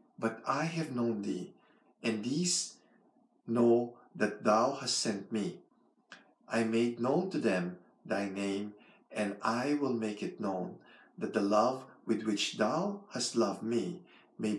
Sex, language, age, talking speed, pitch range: male, English, 50-69, 150 wpm, 105-130 Hz